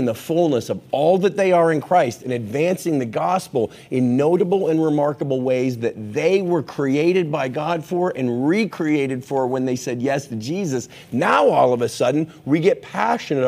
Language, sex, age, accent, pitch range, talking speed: English, male, 40-59, American, 125-160 Hz, 185 wpm